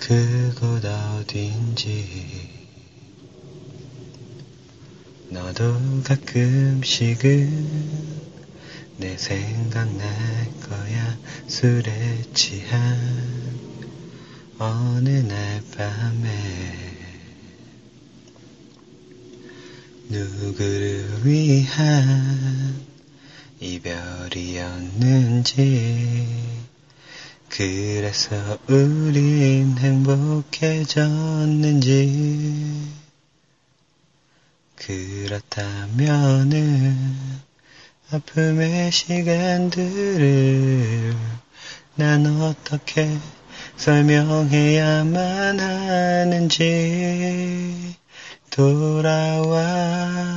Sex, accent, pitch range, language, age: male, native, 115-160 Hz, Korean, 30-49